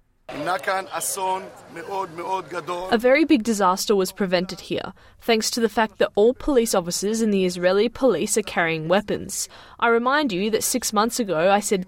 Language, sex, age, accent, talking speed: Indonesian, female, 10-29, Australian, 155 wpm